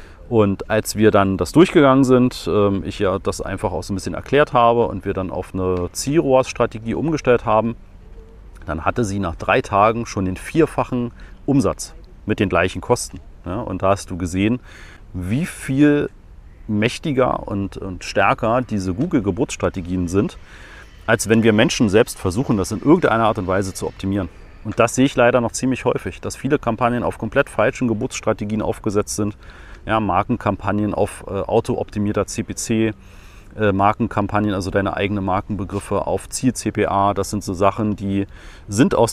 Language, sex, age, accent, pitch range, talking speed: German, male, 40-59, German, 95-115 Hz, 160 wpm